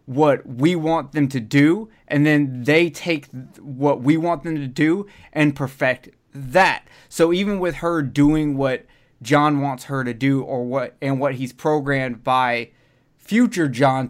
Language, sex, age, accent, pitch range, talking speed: English, male, 20-39, American, 130-160 Hz, 165 wpm